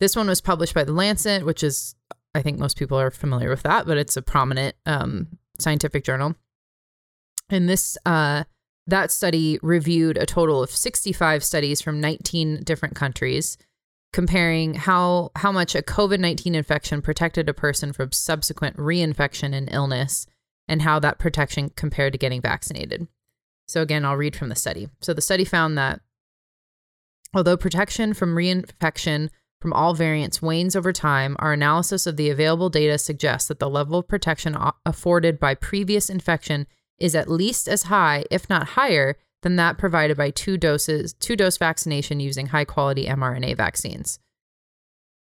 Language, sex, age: English, female, 20-39